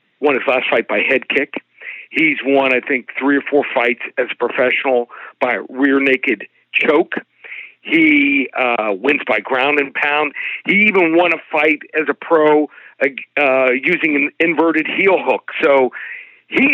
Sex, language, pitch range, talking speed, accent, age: male, English, 145-220 Hz, 165 wpm, American, 50-69